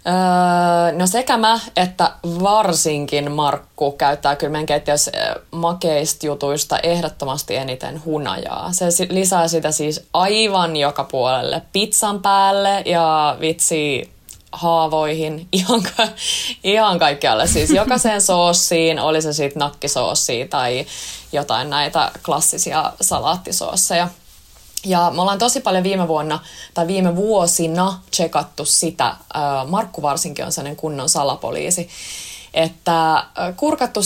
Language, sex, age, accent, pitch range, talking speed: Finnish, female, 20-39, native, 155-190 Hz, 105 wpm